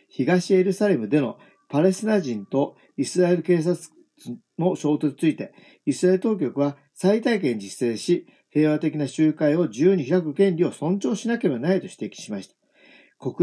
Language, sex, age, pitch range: Japanese, male, 50-69, 140-190 Hz